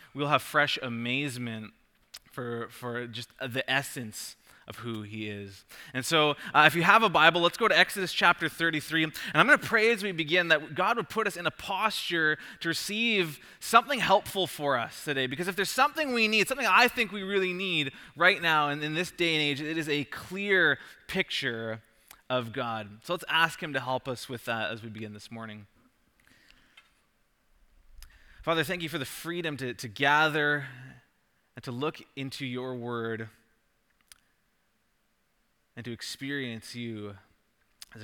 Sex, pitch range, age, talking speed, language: male, 115-165 Hz, 20-39, 175 wpm, English